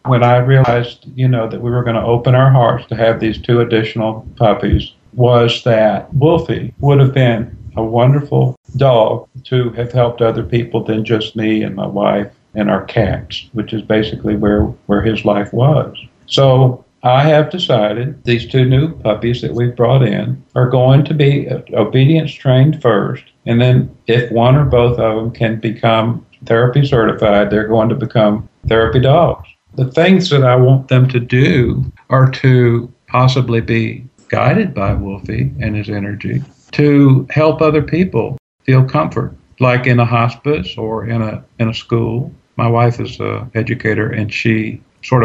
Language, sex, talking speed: English, male, 170 wpm